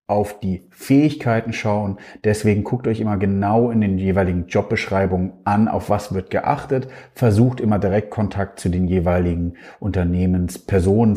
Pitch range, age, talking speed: 95-120 Hz, 40-59, 140 wpm